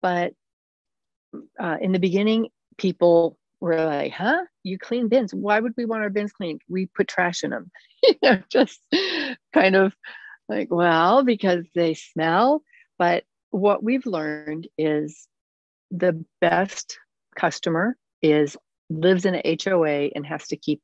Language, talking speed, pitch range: English, 140 wpm, 160-200 Hz